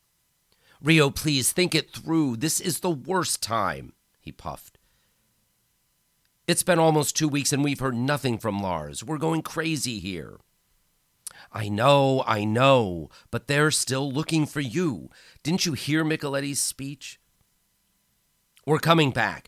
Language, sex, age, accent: English, male, 50-69, American